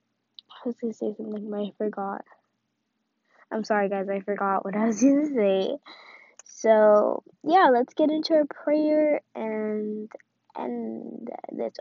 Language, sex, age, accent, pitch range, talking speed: English, female, 10-29, American, 210-305 Hz, 150 wpm